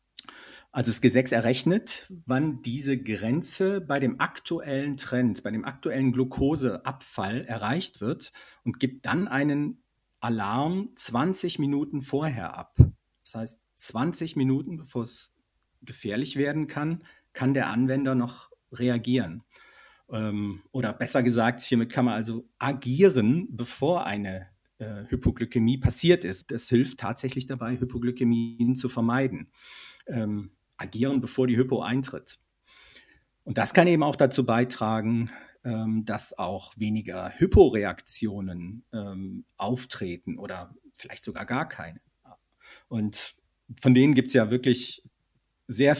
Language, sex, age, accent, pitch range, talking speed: German, male, 50-69, German, 115-135 Hz, 120 wpm